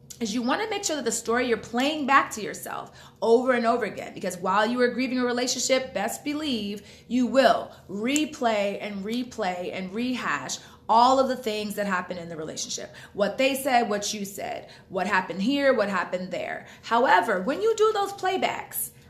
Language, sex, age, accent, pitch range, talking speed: English, female, 30-49, American, 210-260 Hz, 190 wpm